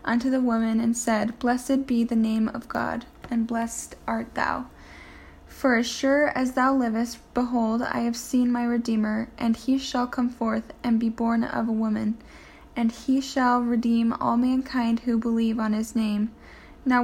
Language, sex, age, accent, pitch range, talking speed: English, female, 10-29, American, 225-250 Hz, 175 wpm